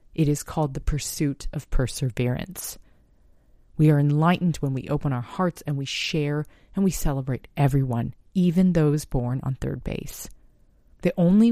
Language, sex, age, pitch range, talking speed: English, female, 30-49, 125-155 Hz, 155 wpm